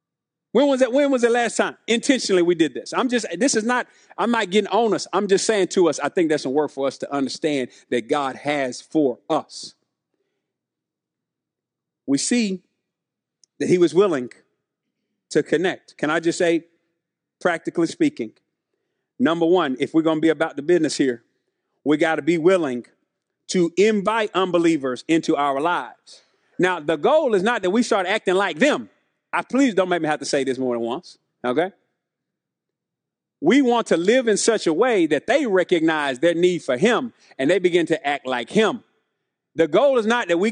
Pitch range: 165-235 Hz